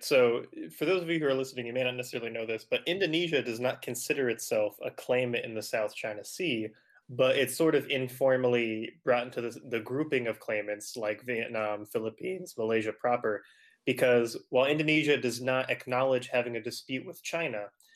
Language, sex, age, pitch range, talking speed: English, male, 20-39, 115-160 Hz, 180 wpm